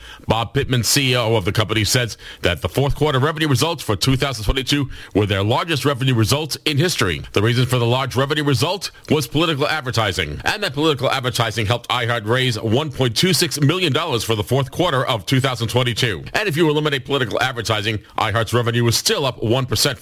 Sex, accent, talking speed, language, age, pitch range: male, American, 175 wpm, English, 40-59, 115-145 Hz